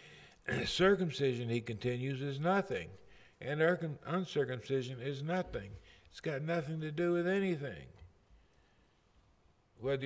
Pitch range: 125-165 Hz